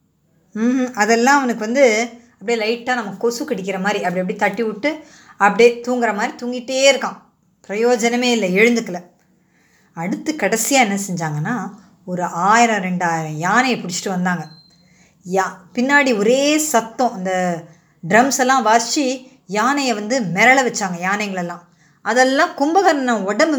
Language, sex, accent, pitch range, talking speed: Tamil, female, native, 185-245 Hz, 120 wpm